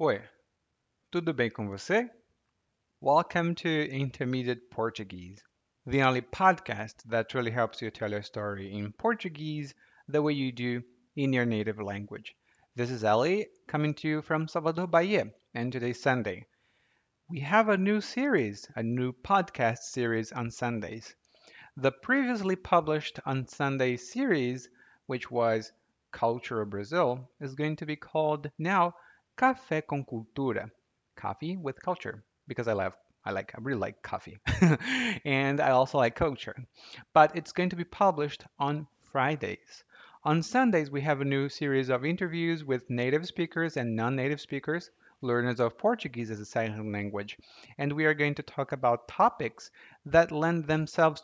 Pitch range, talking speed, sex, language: 120-165 Hz, 150 wpm, male, Portuguese